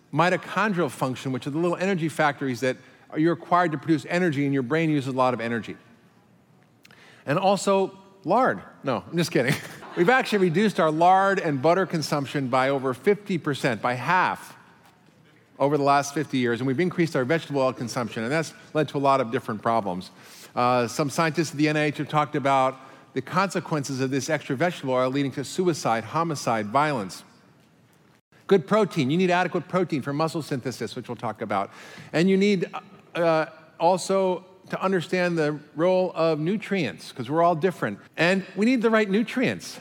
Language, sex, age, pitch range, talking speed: English, male, 50-69, 135-185 Hz, 180 wpm